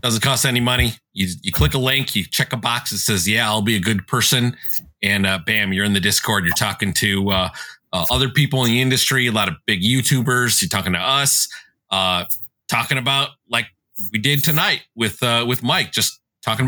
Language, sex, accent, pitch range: English, male, American, 105-135 Hz